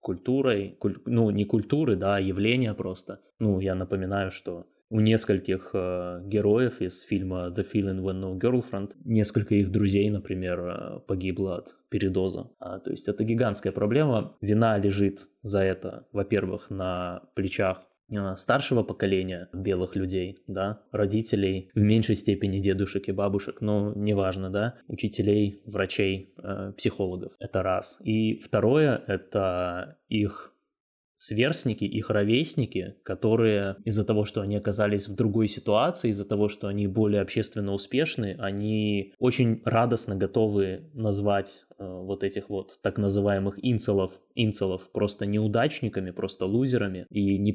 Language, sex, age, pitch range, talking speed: Russian, male, 20-39, 95-110 Hz, 130 wpm